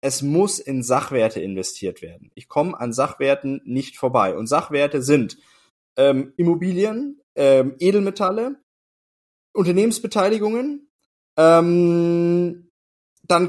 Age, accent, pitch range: 20-39, German, 160-210 Hz